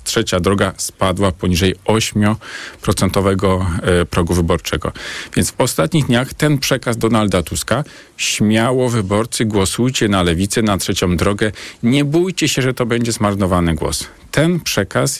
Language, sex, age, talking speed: Polish, male, 40-59, 130 wpm